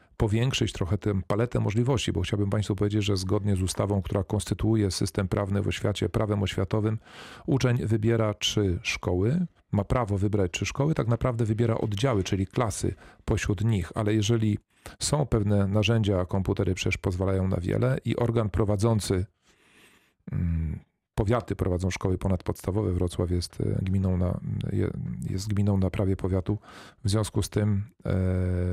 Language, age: Polish, 40-59